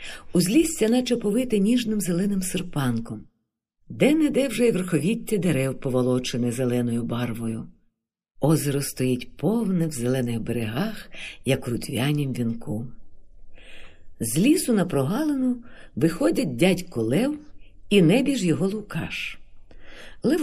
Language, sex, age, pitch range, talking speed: Ukrainian, female, 50-69, 125-200 Hz, 110 wpm